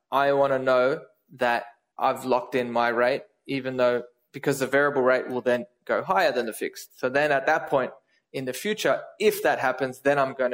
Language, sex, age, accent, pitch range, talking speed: English, male, 20-39, Australian, 125-155 Hz, 210 wpm